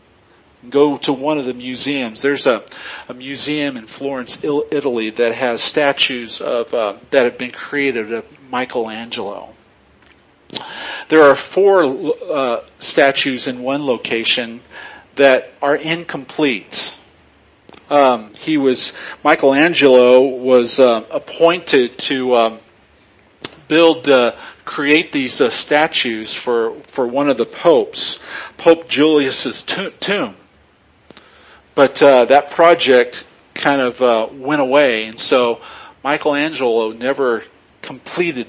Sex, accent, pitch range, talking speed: male, American, 125-150 Hz, 115 wpm